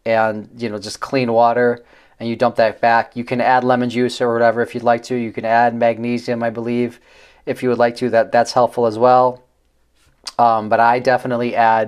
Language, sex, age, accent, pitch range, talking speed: English, male, 30-49, American, 115-130 Hz, 215 wpm